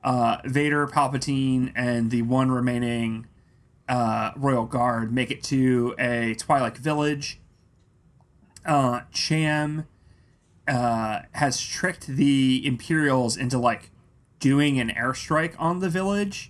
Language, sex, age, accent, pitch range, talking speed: English, male, 30-49, American, 120-140 Hz, 115 wpm